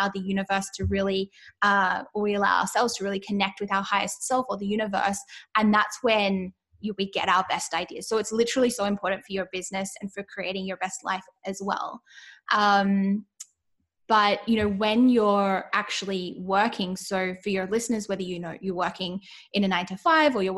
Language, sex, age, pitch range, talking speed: English, female, 10-29, 195-235 Hz, 185 wpm